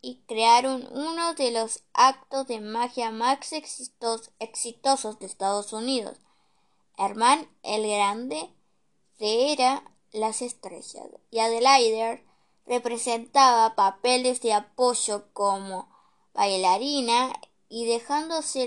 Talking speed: 100 wpm